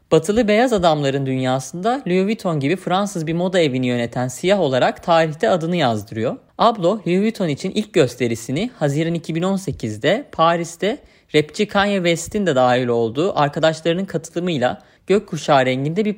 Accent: native